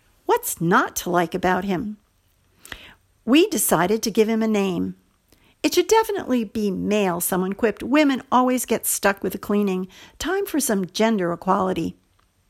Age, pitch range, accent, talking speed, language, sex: 50-69, 190-255 Hz, American, 155 wpm, English, female